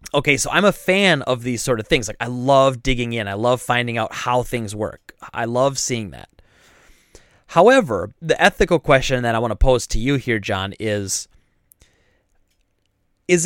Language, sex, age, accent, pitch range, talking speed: English, male, 30-49, American, 115-150 Hz, 185 wpm